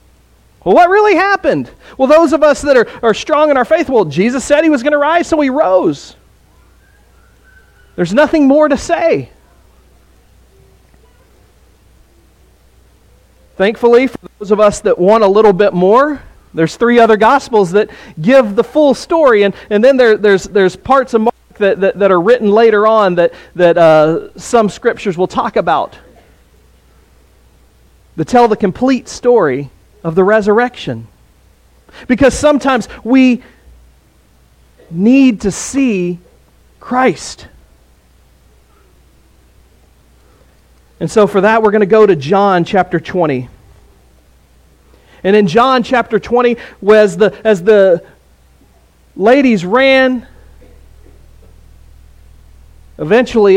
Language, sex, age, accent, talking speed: English, male, 40-59, American, 125 wpm